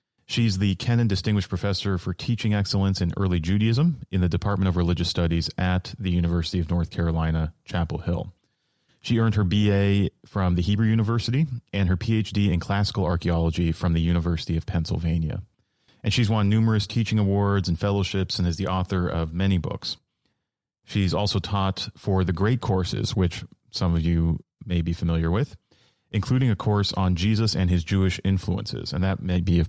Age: 30-49